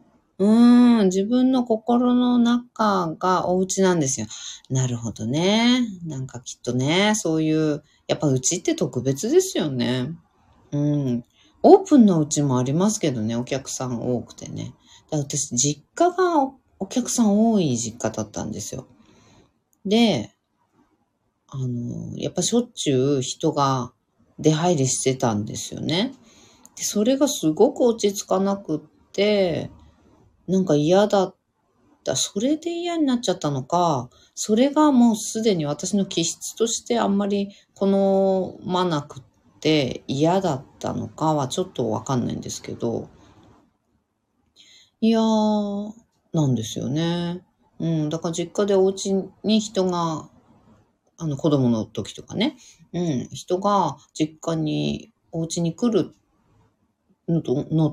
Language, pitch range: Japanese, 130-210 Hz